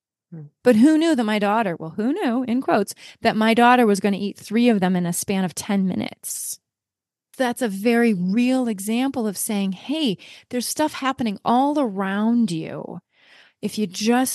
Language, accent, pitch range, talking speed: English, American, 185-225 Hz, 185 wpm